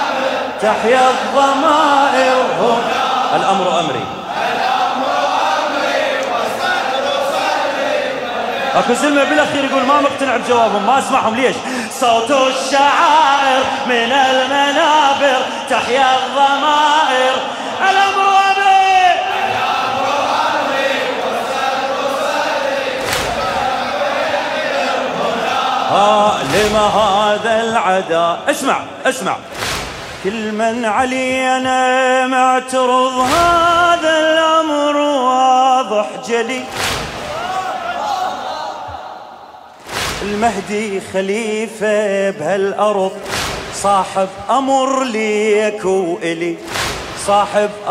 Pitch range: 230-280 Hz